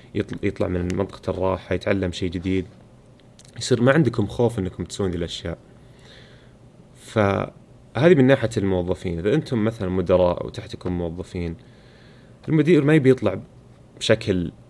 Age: 30-49